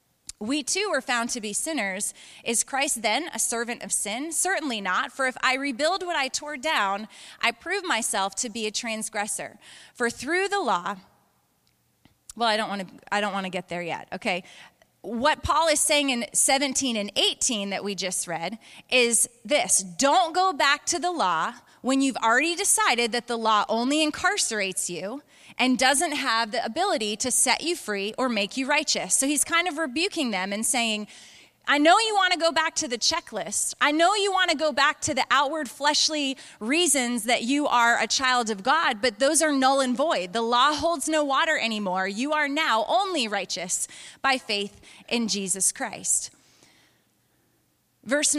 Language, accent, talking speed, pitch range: English, American, 185 wpm, 215-305 Hz